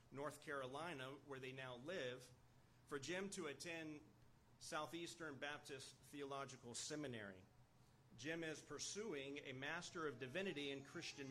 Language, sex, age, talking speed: English, male, 40-59, 120 wpm